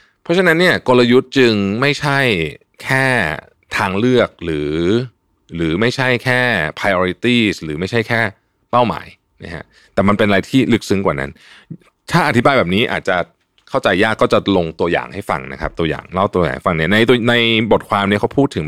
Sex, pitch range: male, 85-115 Hz